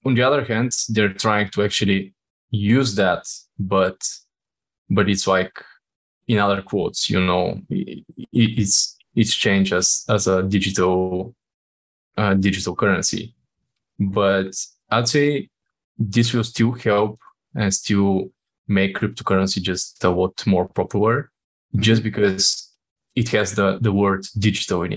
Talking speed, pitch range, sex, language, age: 130 wpm, 95-115 Hz, male, English, 20-39